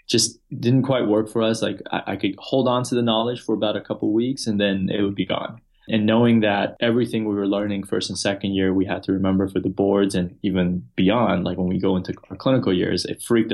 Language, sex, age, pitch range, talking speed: English, male, 20-39, 95-110 Hz, 255 wpm